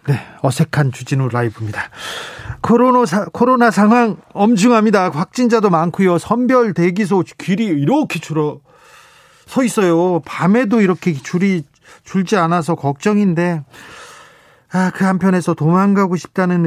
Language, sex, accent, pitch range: Korean, male, native, 145-185 Hz